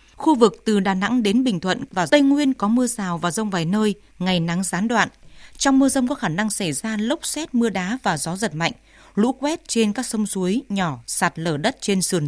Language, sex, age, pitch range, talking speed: Vietnamese, female, 20-39, 190-240 Hz, 245 wpm